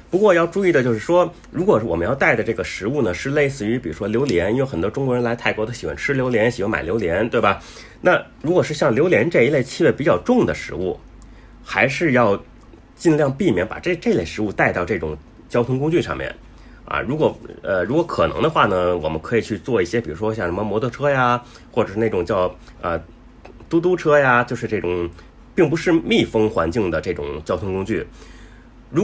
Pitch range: 110-165 Hz